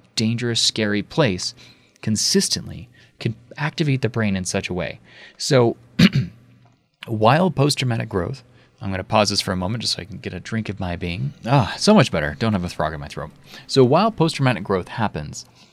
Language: English